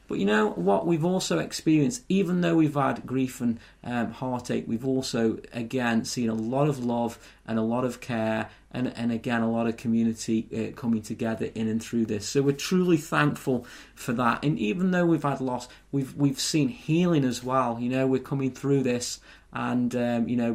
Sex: male